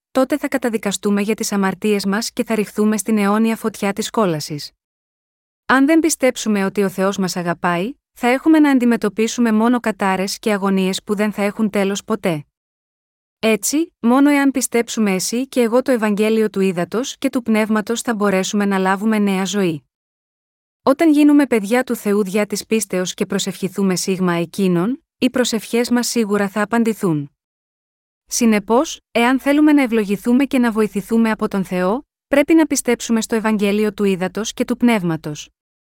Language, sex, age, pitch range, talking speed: Greek, female, 20-39, 200-245 Hz, 160 wpm